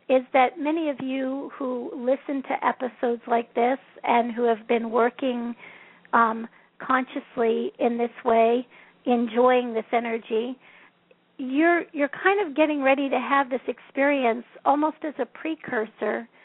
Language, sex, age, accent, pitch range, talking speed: English, female, 50-69, American, 240-285 Hz, 140 wpm